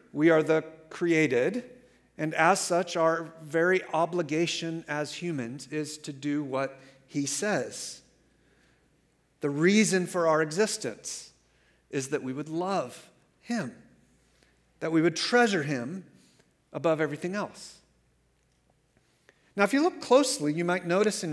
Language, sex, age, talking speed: English, male, 50-69, 130 wpm